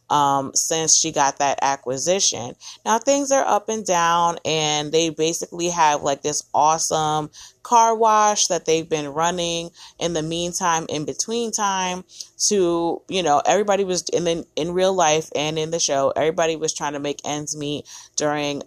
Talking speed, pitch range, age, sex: 170 wpm, 150-185 Hz, 30-49, female